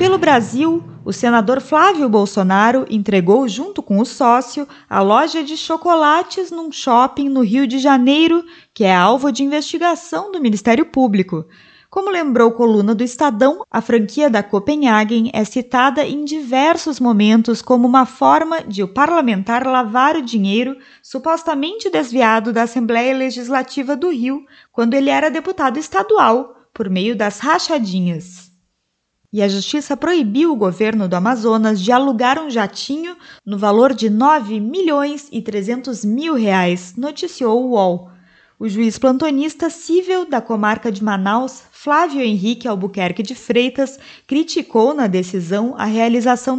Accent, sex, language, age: Brazilian, female, Portuguese, 20-39